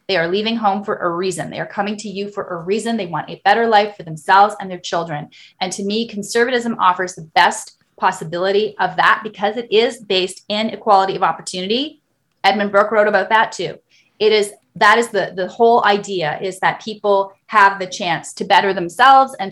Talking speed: 205 wpm